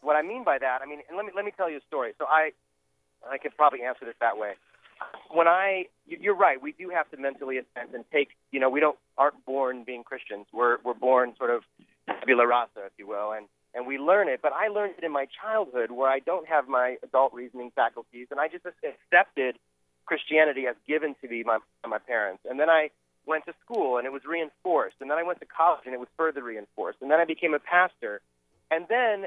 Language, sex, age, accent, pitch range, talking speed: English, male, 30-49, American, 120-155 Hz, 240 wpm